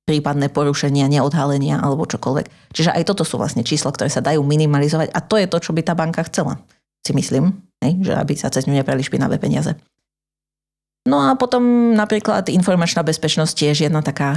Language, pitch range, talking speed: Slovak, 140-165 Hz, 175 wpm